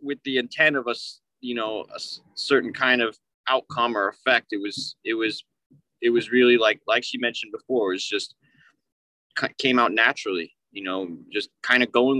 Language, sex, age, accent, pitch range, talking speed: English, male, 20-39, American, 105-125 Hz, 185 wpm